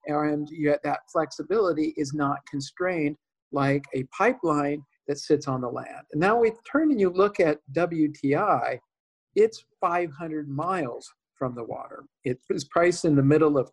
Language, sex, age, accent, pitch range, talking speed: English, male, 50-69, American, 150-195 Hz, 155 wpm